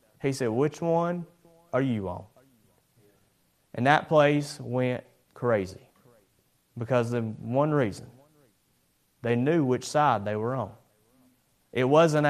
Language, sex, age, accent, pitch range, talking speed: English, male, 30-49, American, 125-165 Hz, 120 wpm